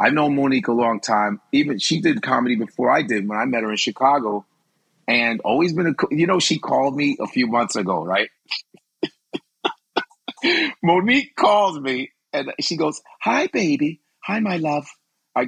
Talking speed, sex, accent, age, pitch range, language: 175 wpm, male, American, 40-59, 120-195 Hz, English